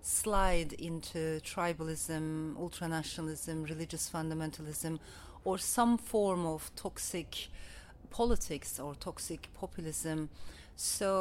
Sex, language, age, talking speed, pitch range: female, English, 40-59, 85 wpm, 160-215 Hz